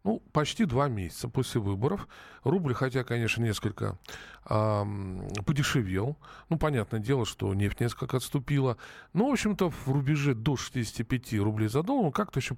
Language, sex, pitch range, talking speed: Russian, male, 115-155 Hz, 150 wpm